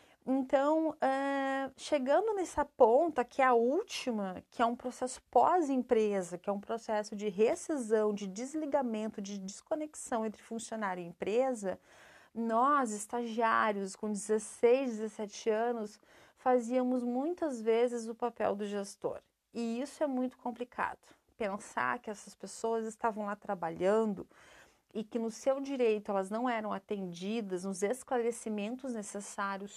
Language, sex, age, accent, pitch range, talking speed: Portuguese, female, 30-49, Brazilian, 210-265 Hz, 130 wpm